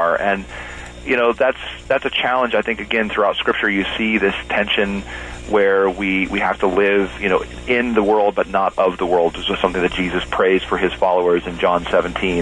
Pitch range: 85-105 Hz